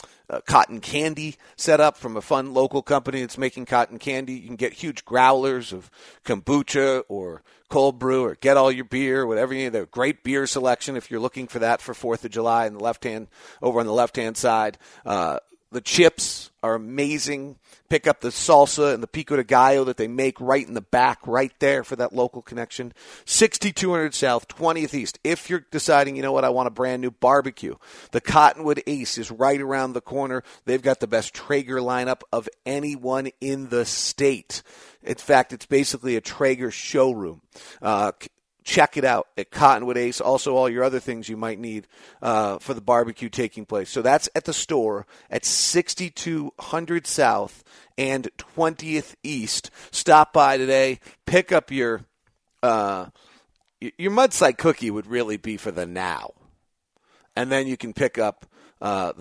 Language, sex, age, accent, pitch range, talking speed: English, male, 40-59, American, 115-140 Hz, 180 wpm